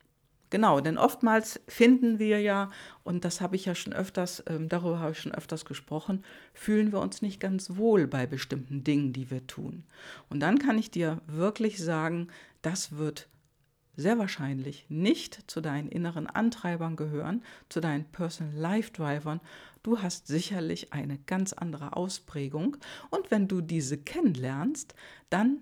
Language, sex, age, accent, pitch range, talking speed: German, female, 50-69, German, 150-210 Hz, 155 wpm